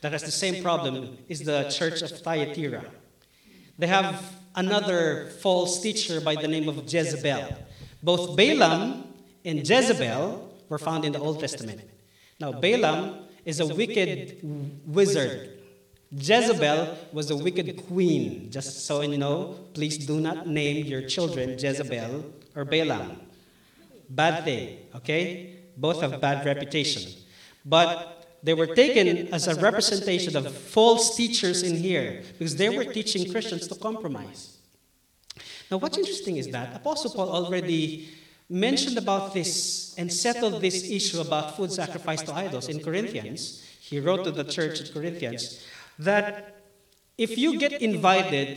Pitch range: 145-190 Hz